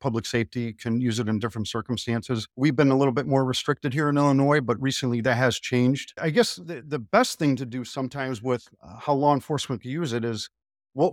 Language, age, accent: English, 50-69, American